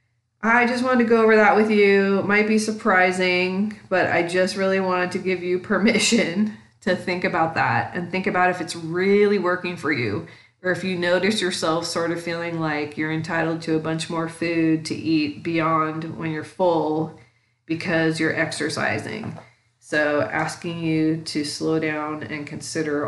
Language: English